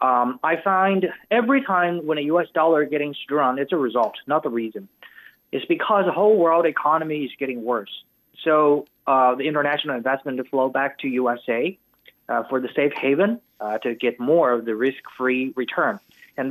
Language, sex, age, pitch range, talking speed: English, male, 30-49, 125-175 Hz, 185 wpm